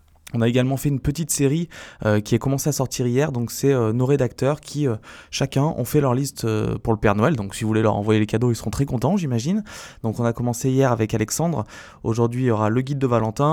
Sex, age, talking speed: male, 20-39, 260 wpm